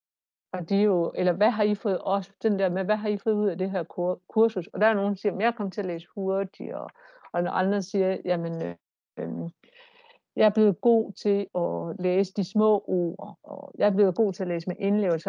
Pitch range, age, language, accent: 180-215 Hz, 60-79, Danish, native